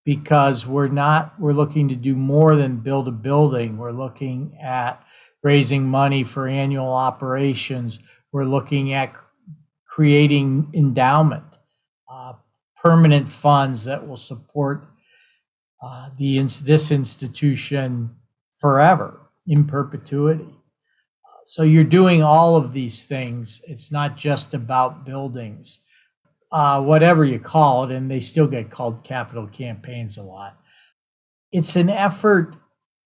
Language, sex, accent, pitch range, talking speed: English, male, American, 130-155 Hz, 125 wpm